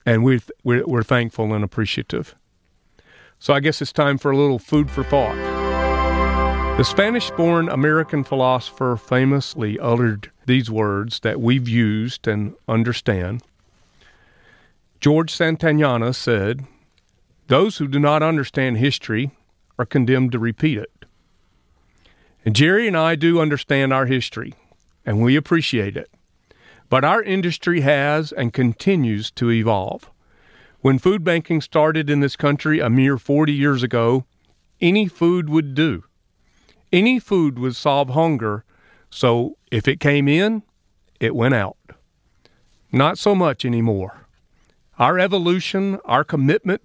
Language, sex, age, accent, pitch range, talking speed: English, male, 50-69, American, 115-155 Hz, 130 wpm